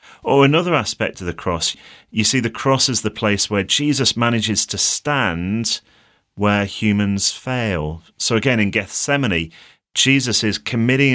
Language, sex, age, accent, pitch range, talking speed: English, male, 30-49, British, 100-120 Hz, 150 wpm